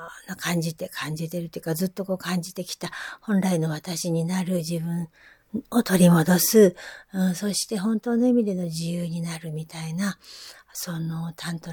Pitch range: 170-215 Hz